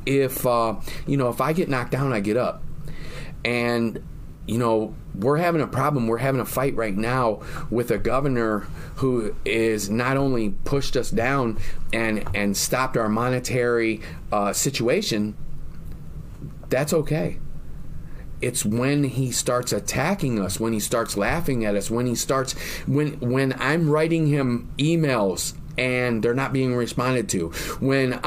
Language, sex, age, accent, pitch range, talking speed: English, male, 30-49, American, 115-140 Hz, 155 wpm